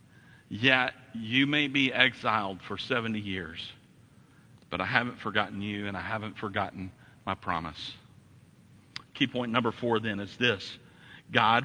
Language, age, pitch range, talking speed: English, 50-69, 115-145 Hz, 140 wpm